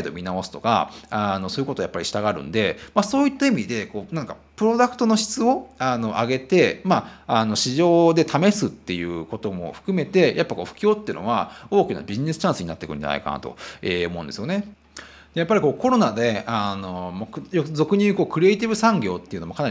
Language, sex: Japanese, male